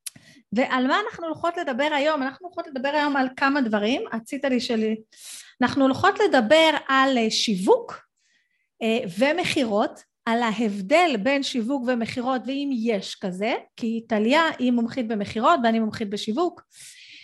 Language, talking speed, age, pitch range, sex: Hebrew, 130 wpm, 30-49, 230-305 Hz, female